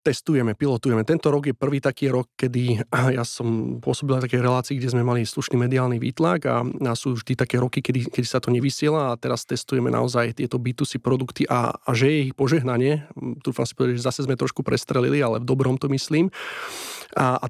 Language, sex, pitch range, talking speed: Slovak, male, 120-135 Hz, 200 wpm